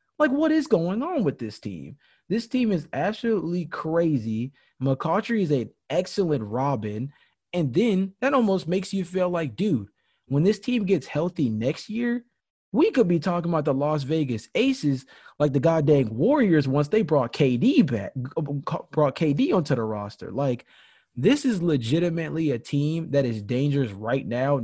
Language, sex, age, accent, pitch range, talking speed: English, male, 20-39, American, 120-165 Hz, 165 wpm